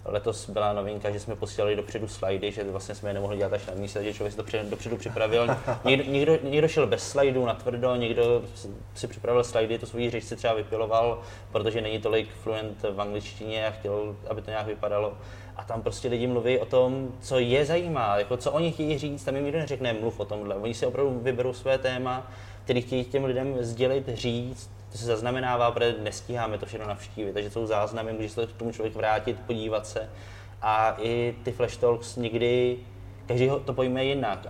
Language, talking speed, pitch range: Czech, 200 wpm, 105-120 Hz